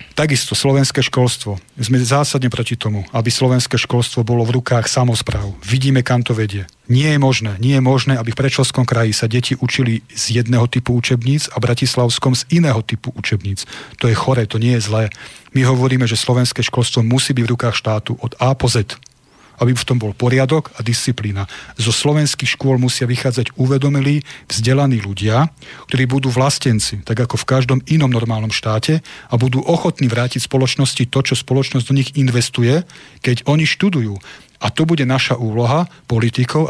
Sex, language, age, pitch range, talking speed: male, Slovak, 40-59, 115-135 Hz, 175 wpm